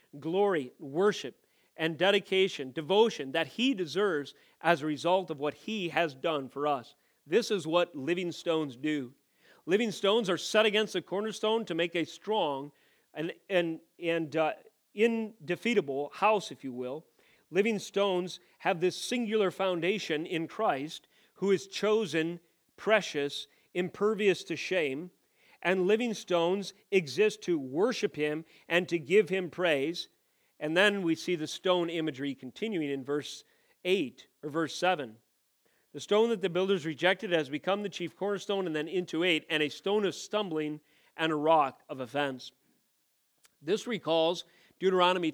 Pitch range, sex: 155-200 Hz, male